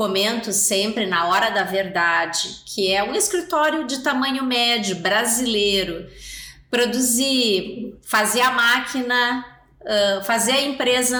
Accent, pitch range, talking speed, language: Brazilian, 205-250 Hz, 115 wpm, Portuguese